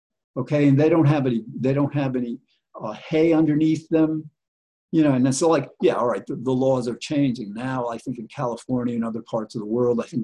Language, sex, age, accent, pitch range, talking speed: English, male, 50-69, American, 115-145 Hz, 240 wpm